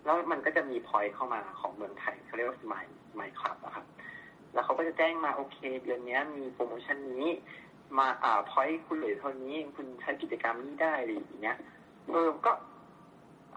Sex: male